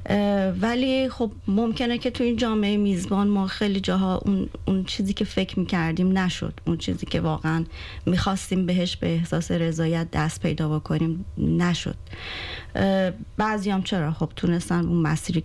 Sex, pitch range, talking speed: female, 170-210 Hz, 150 wpm